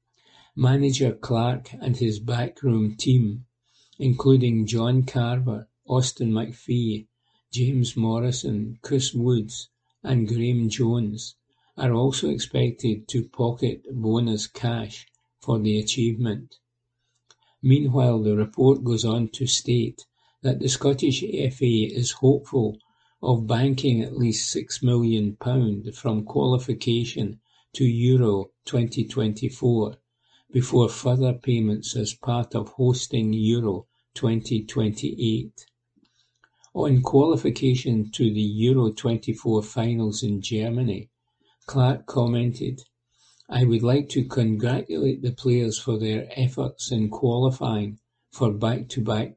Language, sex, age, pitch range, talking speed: English, male, 60-79, 110-130 Hz, 105 wpm